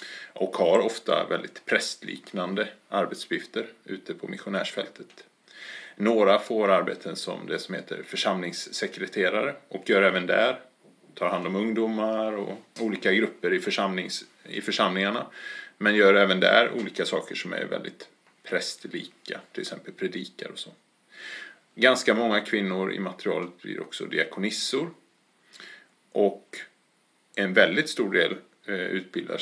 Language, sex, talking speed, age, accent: English, male, 120 wpm, 30-49, Norwegian